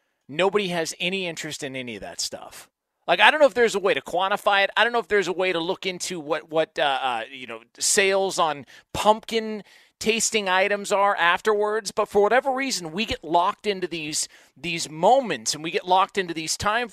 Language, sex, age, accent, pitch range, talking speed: English, male, 40-59, American, 170-220 Hz, 215 wpm